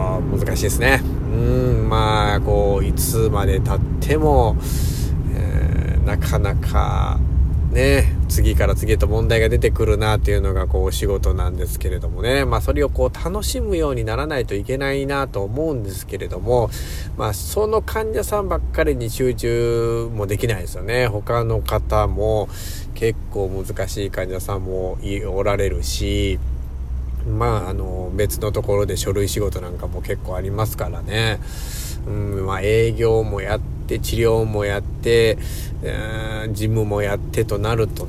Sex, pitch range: male, 95-115 Hz